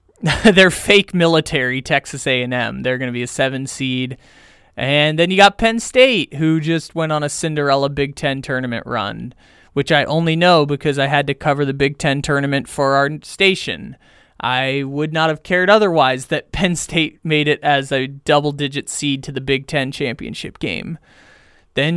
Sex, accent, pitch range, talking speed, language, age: male, American, 140-180 Hz, 185 wpm, English, 20-39